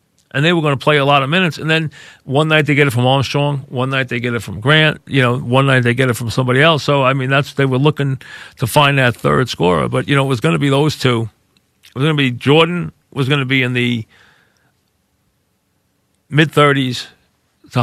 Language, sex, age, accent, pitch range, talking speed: English, male, 40-59, American, 120-145 Hz, 245 wpm